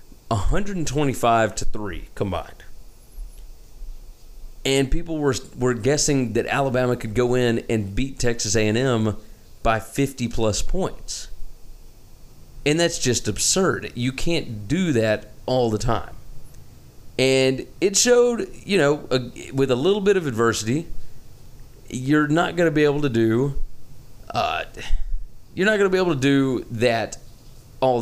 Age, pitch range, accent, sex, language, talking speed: 30-49, 110-135 Hz, American, male, English, 135 wpm